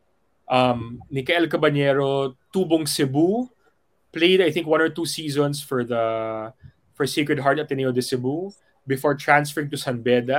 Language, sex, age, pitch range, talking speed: Filipino, male, 20-39, 120-155 Hz, 150 wpm